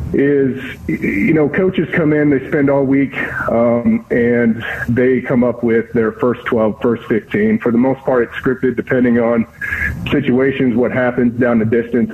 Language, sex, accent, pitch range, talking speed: English, male, American, 115-140 Hz, 175 wpm